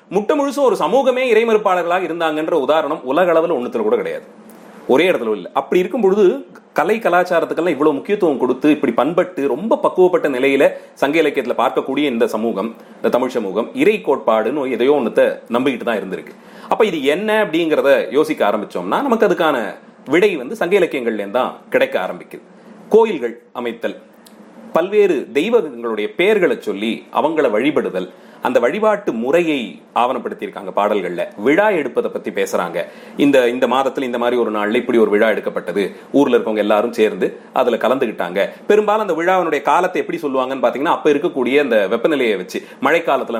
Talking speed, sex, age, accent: 120 wpm, male, 30-49, native